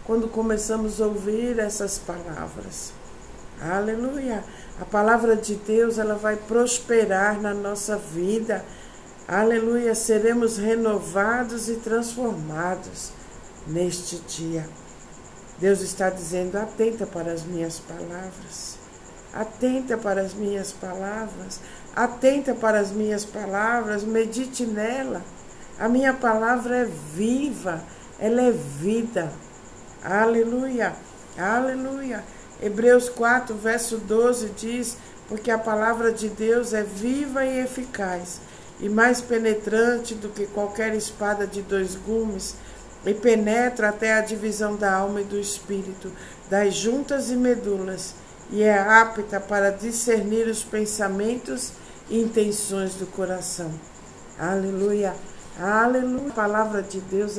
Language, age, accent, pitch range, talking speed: Portuguese, 60-79, Brazilian, 195-230 Hz, 115 wpm